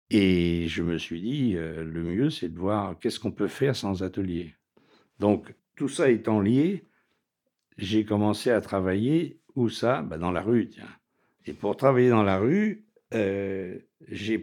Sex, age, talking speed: male, 60-79, 170 wpm